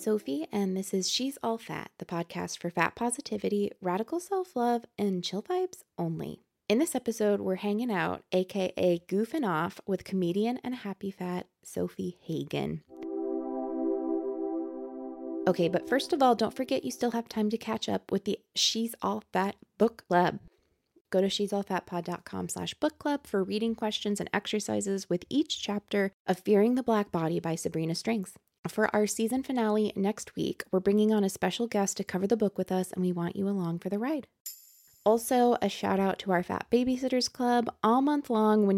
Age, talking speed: 20-39, 180 wpm